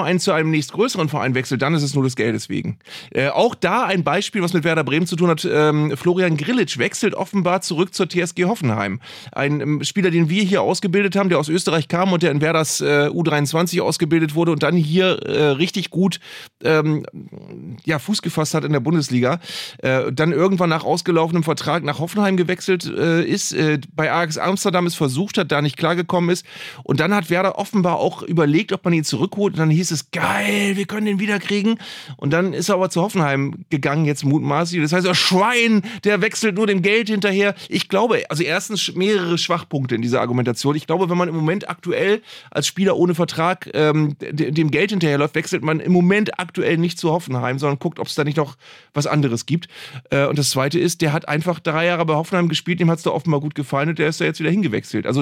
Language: German